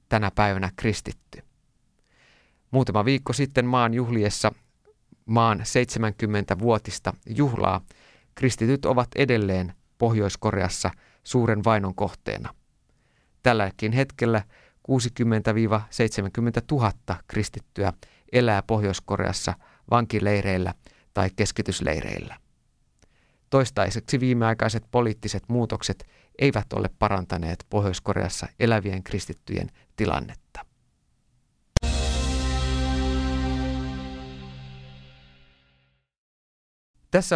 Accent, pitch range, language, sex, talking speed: native, 100-125 Hz, Finnish, male, 65 wpm